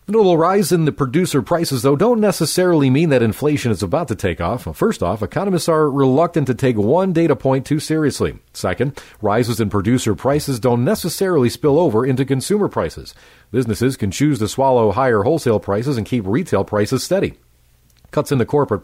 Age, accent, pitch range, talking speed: 40-59, American, 110-150 Hz, 190 wpm